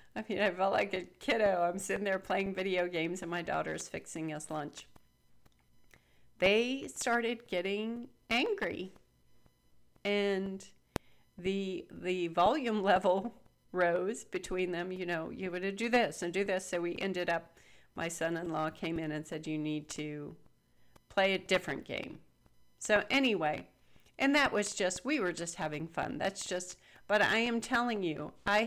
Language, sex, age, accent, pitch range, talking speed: English, female, 40-59, American, 175-205 Hz, 160 wpm